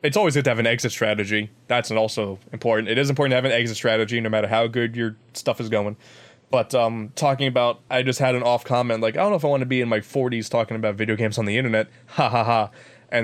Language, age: English, 20-39